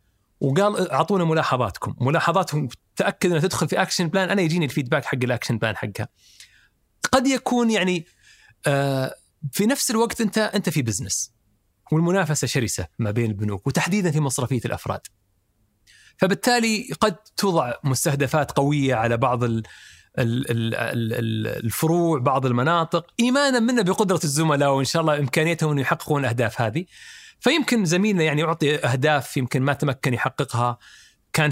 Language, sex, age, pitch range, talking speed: Arabic, male, 30-49, 120-160 Hz, 130 wpm